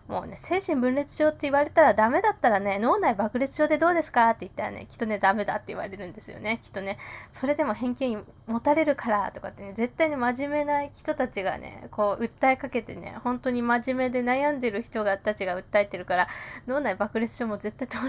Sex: female